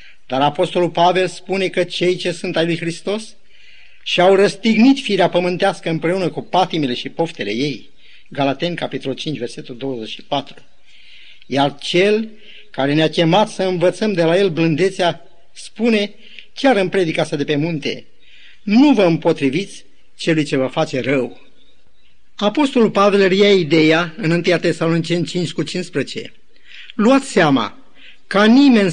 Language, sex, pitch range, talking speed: Romanian, male, 165-205 Hz, 140 wpm